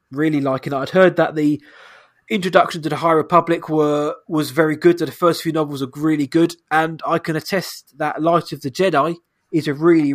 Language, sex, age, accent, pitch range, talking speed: English, male, 20-39, British, 140-170 Hz, 220 wpm